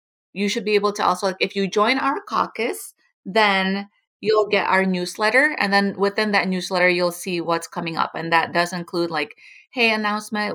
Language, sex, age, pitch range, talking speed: English, female, 30-49, 180-215 Hz, 190 wpm